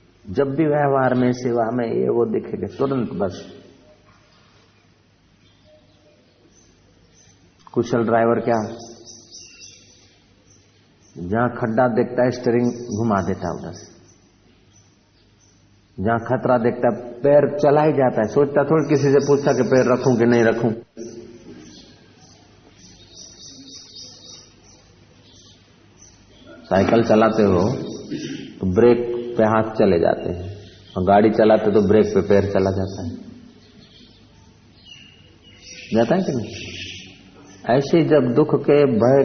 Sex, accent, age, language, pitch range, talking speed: male, native, 60-79, Hindi, 100-125 Hz, 115 wpm